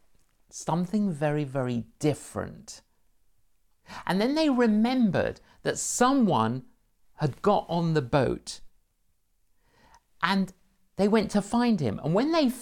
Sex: male